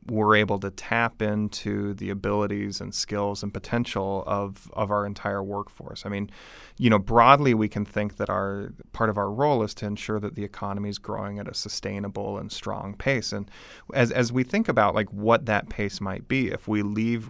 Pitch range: 100-115 Hz